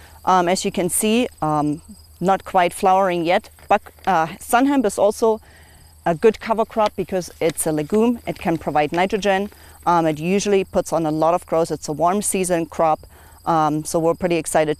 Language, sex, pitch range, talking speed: English, female, 150-190 Hz, 185 wpm